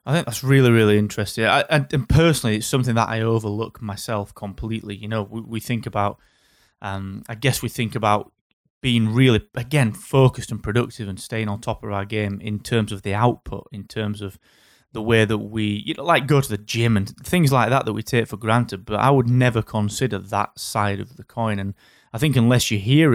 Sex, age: male, 20-39